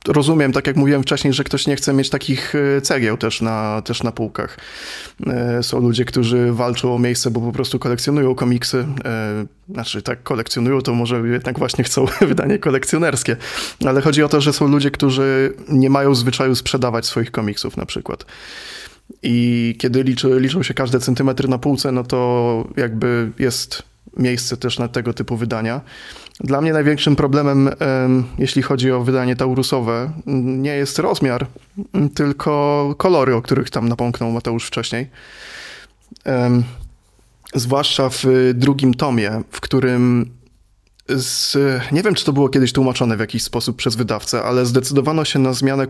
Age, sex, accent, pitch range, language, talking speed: 20-39, male, native, 120-140 Hz, Polish, 150 wpm